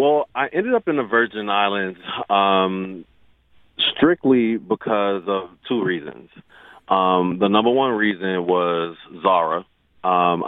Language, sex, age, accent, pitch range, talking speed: English, male, 30-49, American, 85-105 Hz, 125 wpm